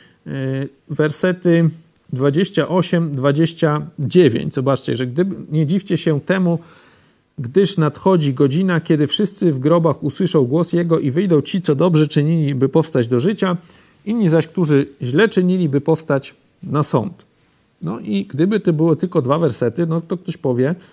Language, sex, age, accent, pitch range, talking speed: Polish, male, 40-59, native, 135-170 Hz, 140 wpm